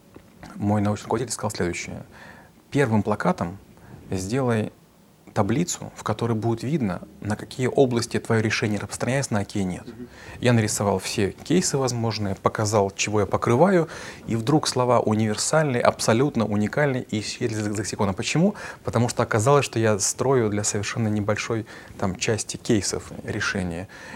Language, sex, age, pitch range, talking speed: Russian, male, 30-49, 105-120 Hz, 140 wpm